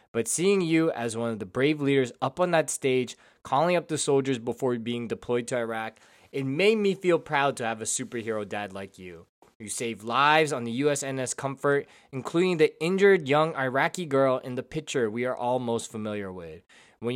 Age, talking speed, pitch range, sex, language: 20-39, 200 wpm, 115-155 Hz, male, English